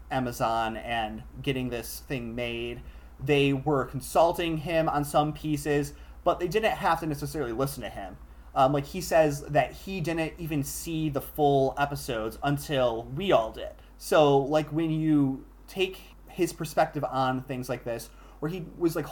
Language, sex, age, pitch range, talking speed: English, male, 30-49, 125-150 Hz, 165 wpm